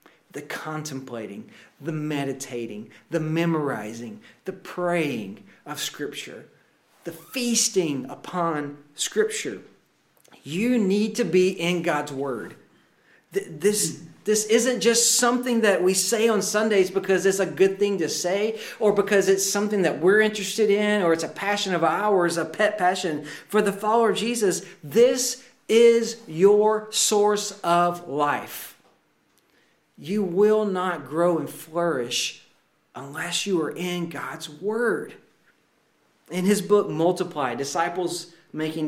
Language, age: English, 40-59